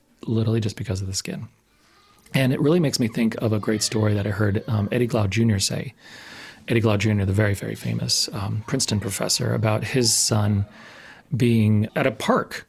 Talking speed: 195 wpm